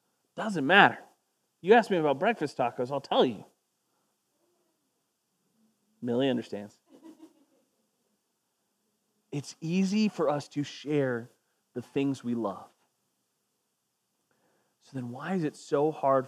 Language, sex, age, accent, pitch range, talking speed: English, male, 30-49, American, 125-175 Hz, 110 wpm